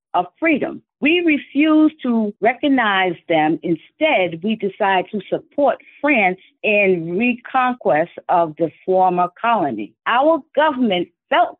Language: English